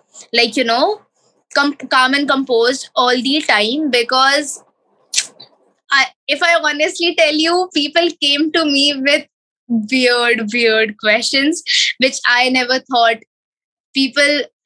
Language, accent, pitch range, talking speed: Hindi, native, 255-320 Hz, 125 wpm